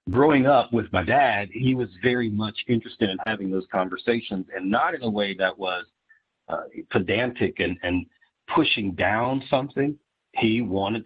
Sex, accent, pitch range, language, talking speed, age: male, American, 95-120 Hz, English, 165 wpm, 50-69